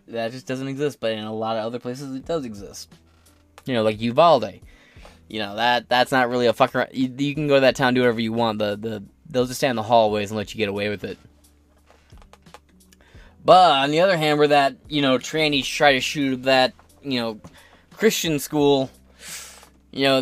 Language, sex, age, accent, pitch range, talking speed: English, male, 20-39, American, 110-135 Hz, 215 wpm